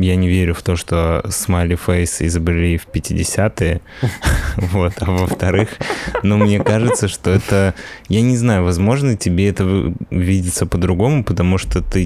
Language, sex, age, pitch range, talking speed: Russian, male, 20-39, 90-100 Hz, 145 wpm